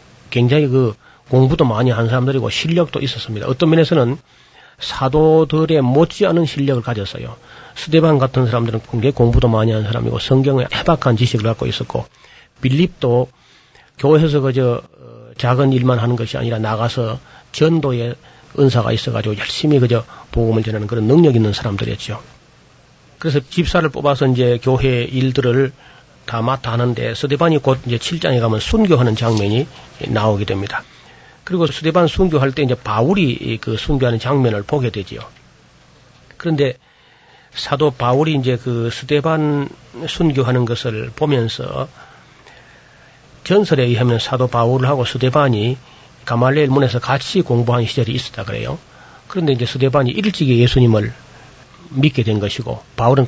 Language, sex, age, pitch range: Korean, male, 40-59, 120-145 Hz